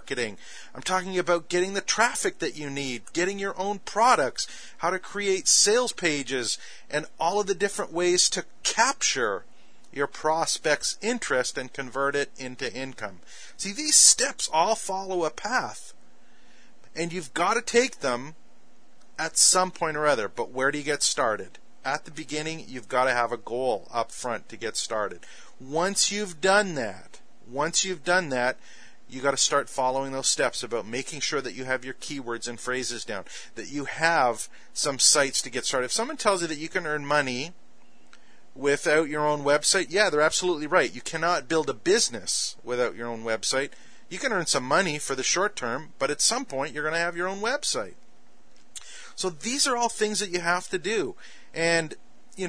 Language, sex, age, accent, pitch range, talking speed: English, male, 40-59, American, 140-195 Hz, 185 wpm